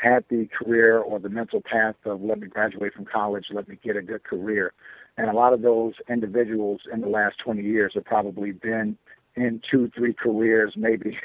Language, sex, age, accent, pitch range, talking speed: English, male, 60-79, American, 110-120 Hz, 205 wpm